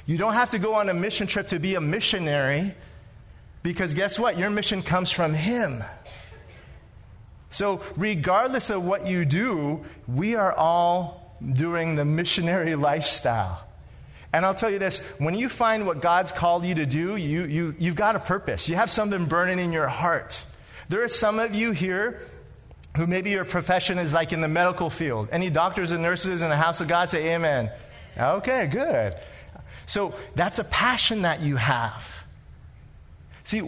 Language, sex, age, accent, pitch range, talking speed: English, male, 30-49, American, 135-190 Hz, 170 wpm